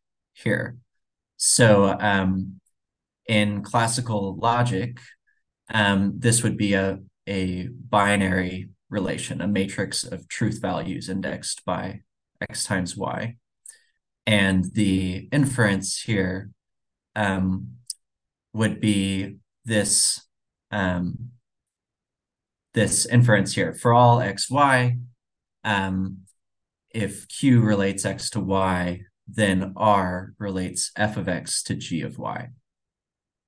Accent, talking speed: American, 100 wpm